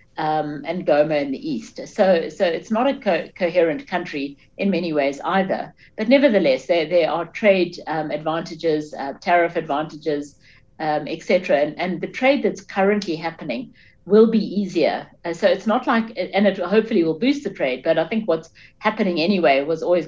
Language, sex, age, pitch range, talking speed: English, female, 60-79, 150-200 Hz, 185 wpm